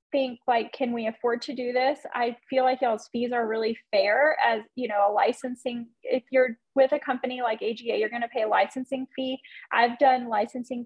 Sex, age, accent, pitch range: female, 20-39, American, 205-245 Hz